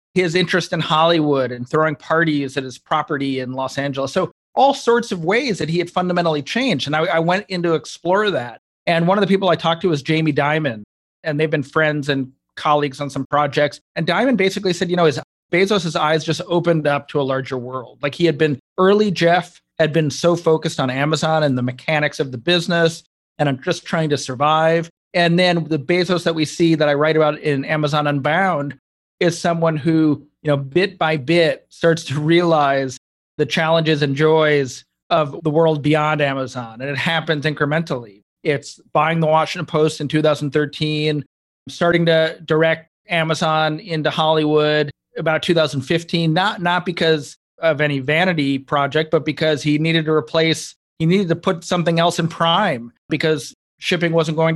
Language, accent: English, American